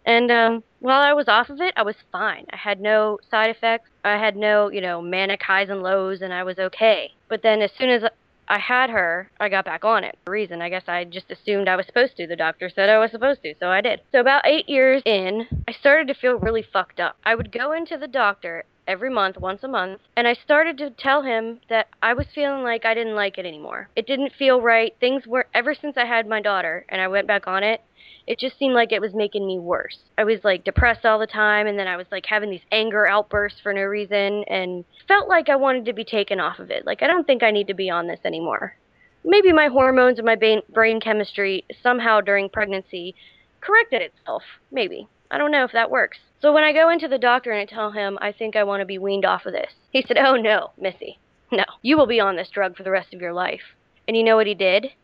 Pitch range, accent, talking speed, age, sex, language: 195-250 Hz, American, 255 wpm, 20-39, female, English